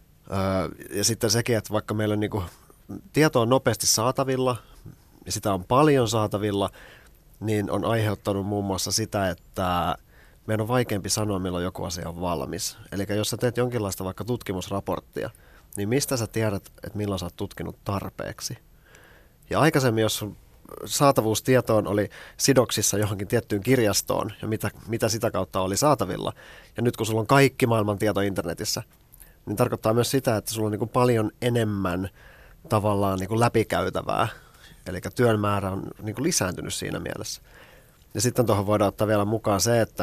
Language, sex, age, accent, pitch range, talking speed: Finnish, male, 30-49, native, 95-115 Hz, 165 wpm